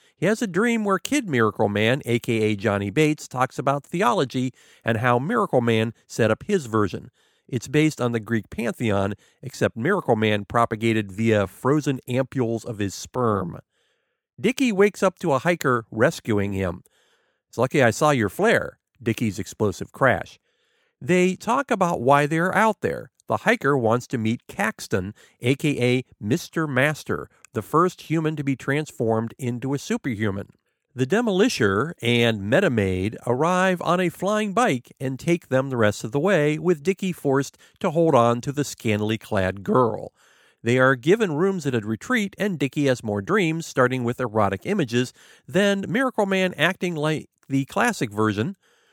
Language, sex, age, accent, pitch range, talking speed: English, male, 50-69, American, 110-170 Hz, 165 wpm